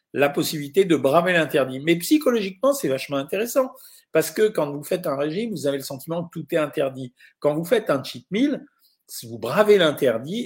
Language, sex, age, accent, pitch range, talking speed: French, male, 50-69, French, 140-205 Hz, 195 wpm